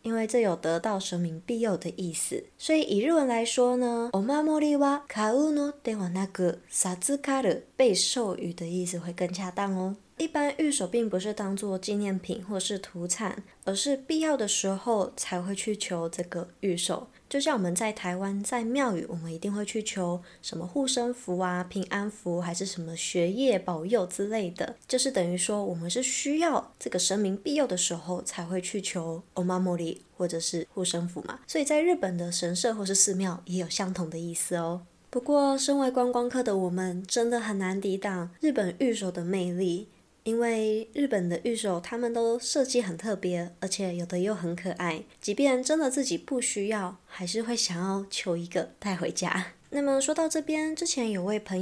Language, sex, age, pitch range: Chinese, female, 20-39, 180-235 Hz